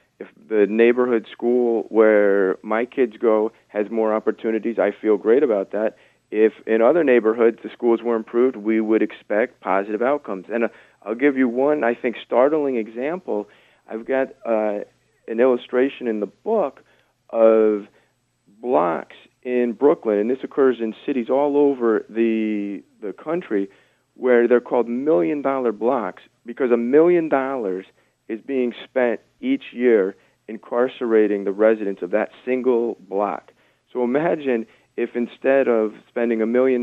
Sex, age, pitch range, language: male, 40-59, 110-125 Hz, English